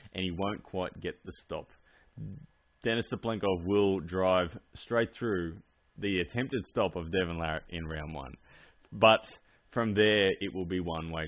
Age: 20-39